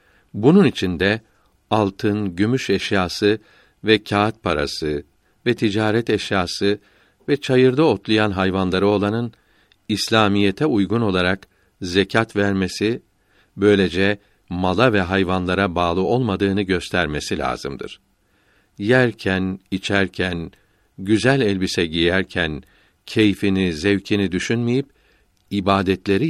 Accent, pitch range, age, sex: native, 90-105 Hz, 60-79, male